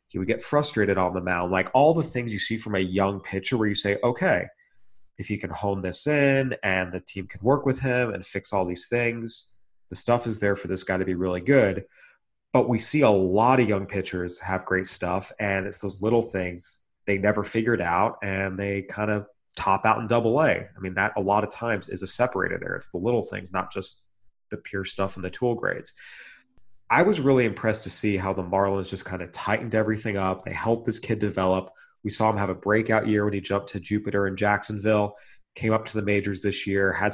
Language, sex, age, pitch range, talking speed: English, male, 30-49, 95-110 Hz, 235 wpm